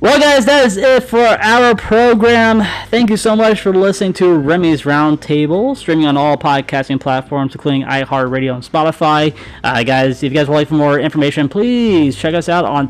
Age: 20-39